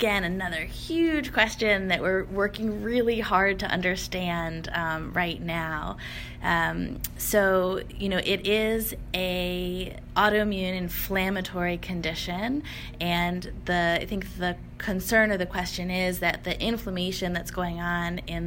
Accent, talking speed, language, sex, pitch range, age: American, 135 wpm, English, female, 170-195 Hz, 20-39